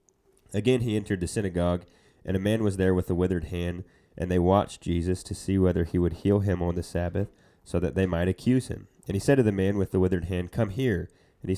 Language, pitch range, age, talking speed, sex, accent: English, 90-110 Hz, 30-49, 250 wpm, male, American